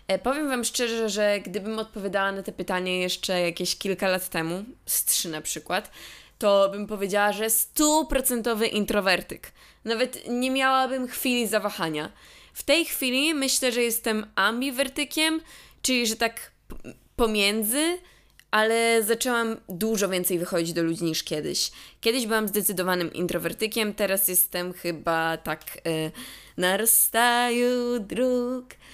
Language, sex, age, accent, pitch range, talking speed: Polish, female, 20-39, native, 190-240 Hz, 125 wpm